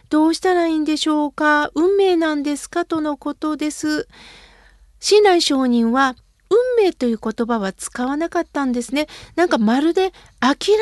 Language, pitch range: Japanese, 265-340 Hz